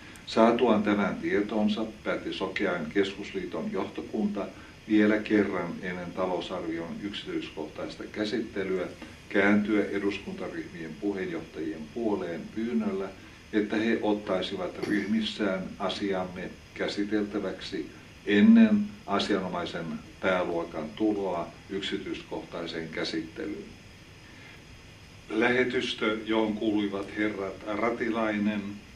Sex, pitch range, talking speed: male, 95-110 Hz, 75 wpm